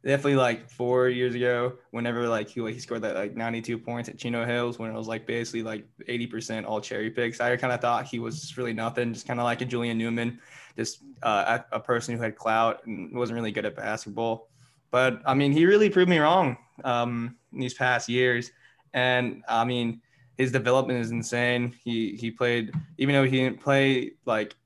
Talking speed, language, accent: 205 wpm, English, American